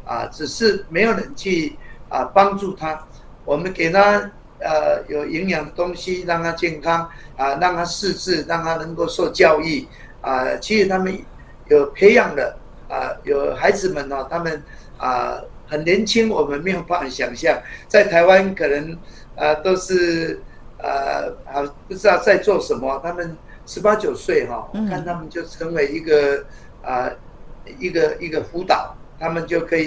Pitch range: 150-195 Hz